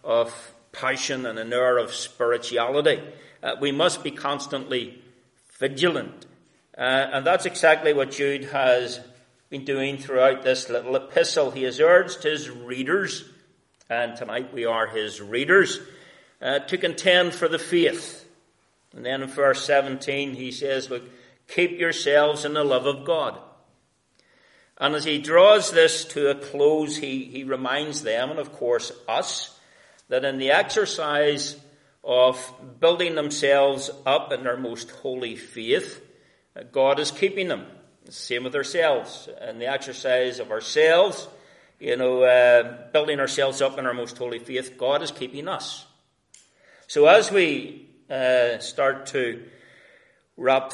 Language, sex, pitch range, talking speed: English, male, 125-150 Hz, 145 wpm